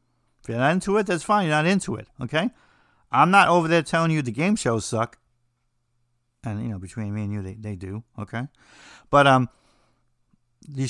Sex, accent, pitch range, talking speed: male, American, 120-155 Hz, 200 wpm